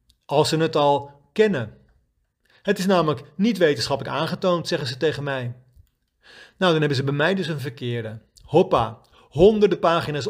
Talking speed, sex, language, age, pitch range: 155 wpm, male, Dutch, 40-59, 135-185 Hz